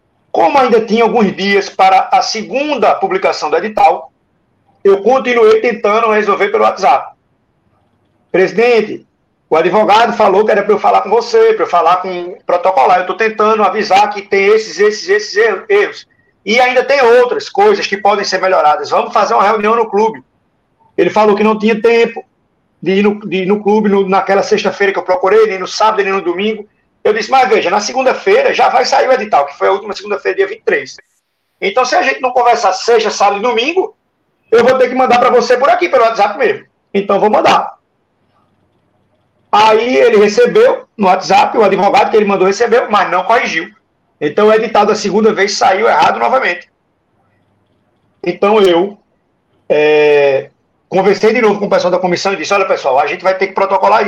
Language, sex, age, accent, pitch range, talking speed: Portuguese, male, 50-69, Brazilian, 195-265 Hz, 185 wpm